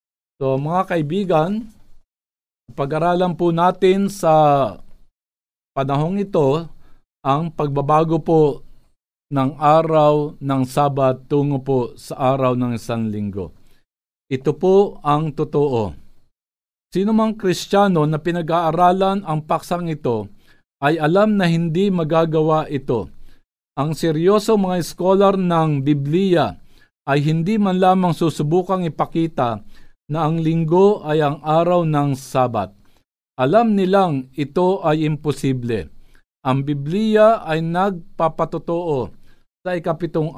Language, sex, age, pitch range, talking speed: Filipino, male, 50-69, 135-175 Hz, 105 wpm